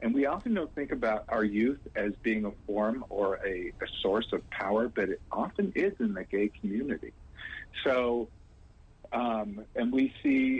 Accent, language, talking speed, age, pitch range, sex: American, English, 175 wpm, 50-69, 105-130 Hz, male